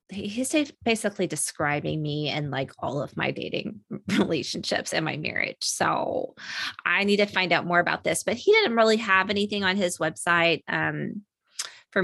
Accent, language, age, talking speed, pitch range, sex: American, English, 20-39, 170 wpm, 155-200 Hz, female